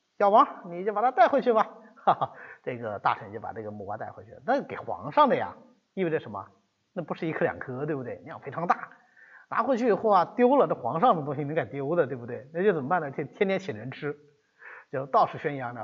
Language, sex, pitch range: Chinese, male, 160-250 Hz